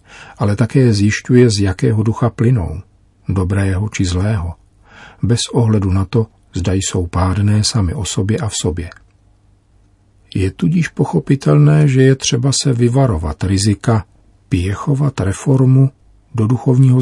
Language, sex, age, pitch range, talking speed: Czech, male, 50-69, 95-115 Hz, 125 wpm